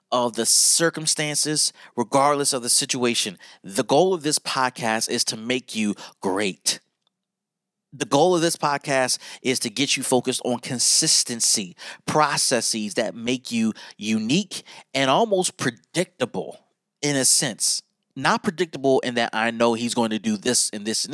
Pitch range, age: 120-165 Hz, 30-49